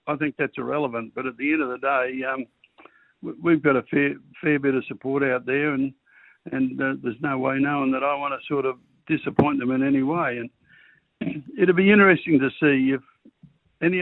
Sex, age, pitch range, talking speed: male, 60-79, 130-165 Hz, 205 wpm